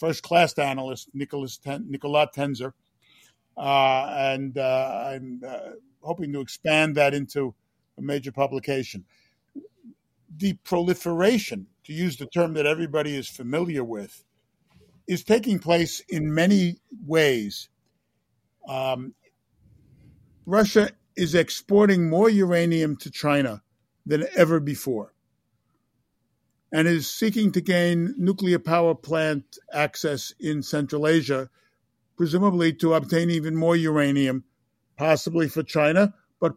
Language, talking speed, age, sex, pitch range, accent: English, 110 wpm, 50-69, male, 140-170 Hz, American